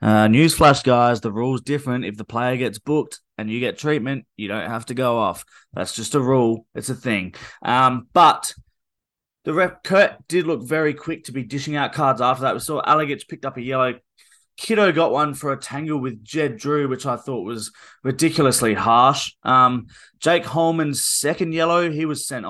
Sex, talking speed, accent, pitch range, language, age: male, 200 wpm, Australian, 120-150 Hz, English, 20-39